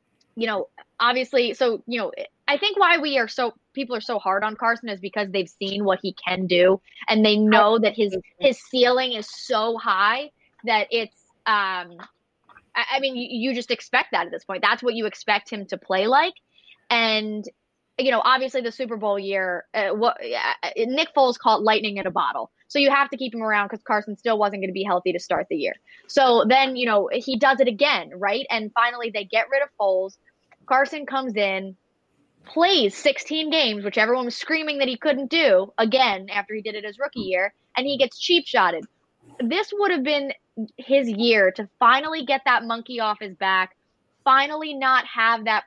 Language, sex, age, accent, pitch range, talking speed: English, female, 20-39, American, 205-270 Hz, 205 wpm